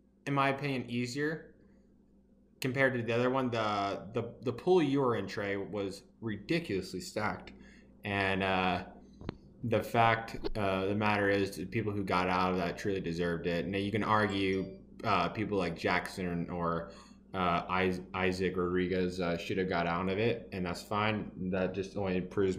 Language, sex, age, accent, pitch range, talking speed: English, male, 20-39, American, 90-110 Hz, 170 wpm